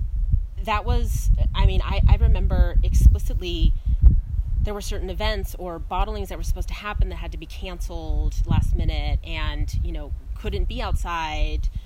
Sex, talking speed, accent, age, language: female, 160 wpm, American, 30-49, English